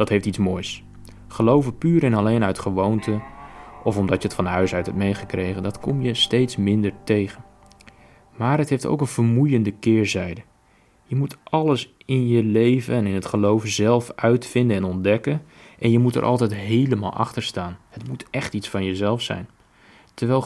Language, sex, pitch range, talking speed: Dutch, male, 100-130 Hz, 180 wpm